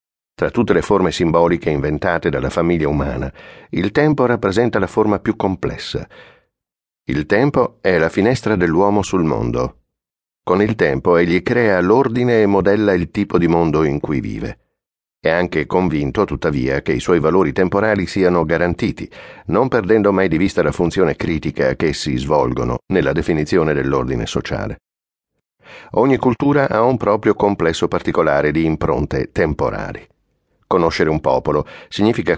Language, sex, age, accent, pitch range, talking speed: Italian, male, 60-79, native, 80-105 Hz, 145 wpm